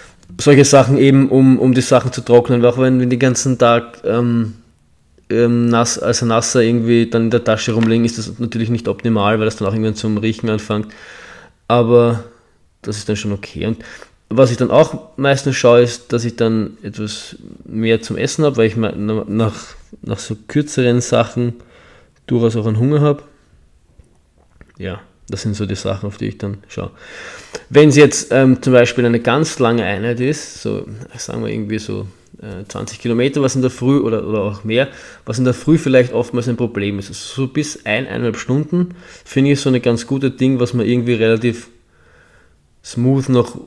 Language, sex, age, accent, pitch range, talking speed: German, male, 20-39, German, 110-130 Hz, 190 wpm